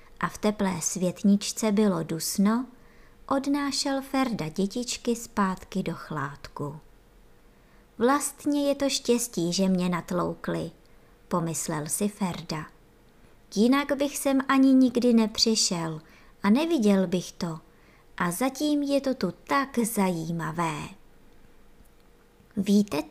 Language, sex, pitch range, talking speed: Czech, male, 185-265 Hz, 105 wpm